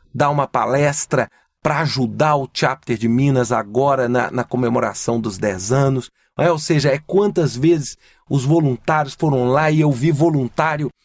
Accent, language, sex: Brazilian, Portuguese, male